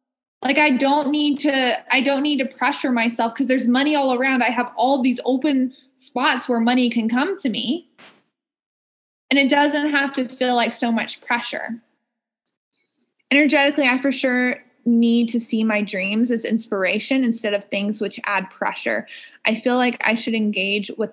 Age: 20-39